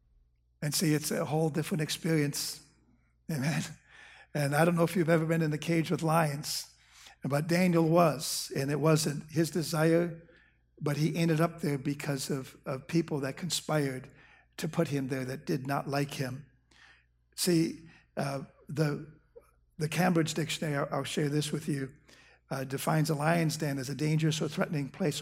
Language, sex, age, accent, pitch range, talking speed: English, male, 60-79, American, 135-160 Hz, 170 wpm